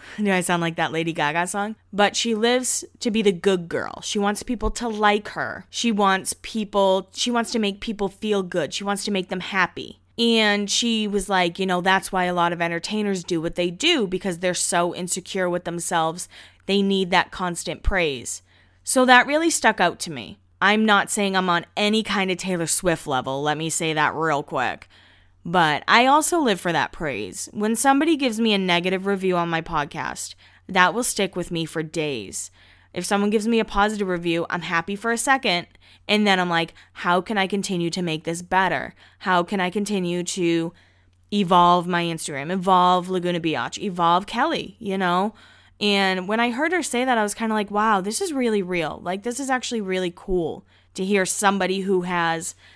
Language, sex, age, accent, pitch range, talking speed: English, female, 20-39, American, 170-215 Hz, 205 wpm